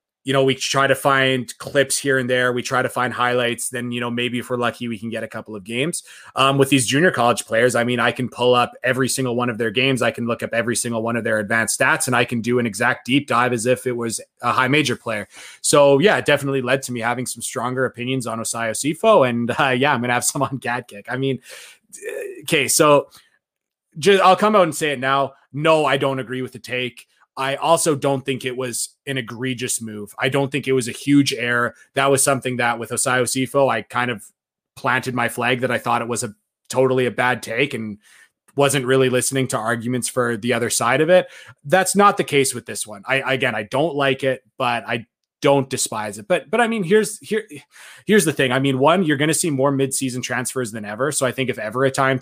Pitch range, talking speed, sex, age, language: 120-140 Hz, 245 wpm, male, 20-39, English